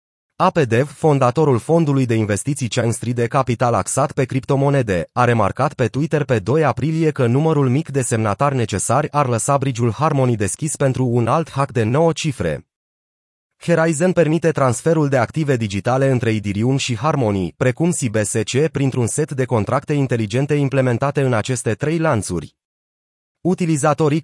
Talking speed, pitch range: 145 wpm, 120-150 Hz